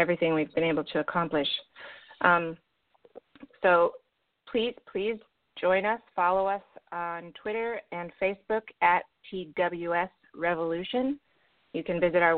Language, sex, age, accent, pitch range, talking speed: English, female, 30-49, American, 165-185 Hz, 120 wpm